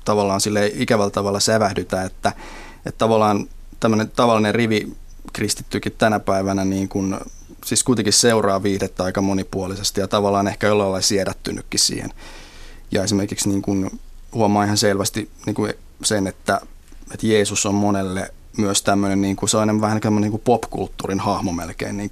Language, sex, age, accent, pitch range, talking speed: Finnish, male, 20-39, native, 100-115 Hz, 145 wpm